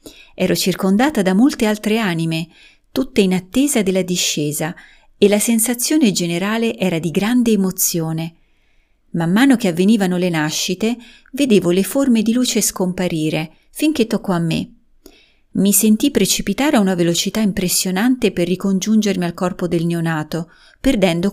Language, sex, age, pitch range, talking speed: Italian, female, 30-49, 175-225 Hz, 140 wpm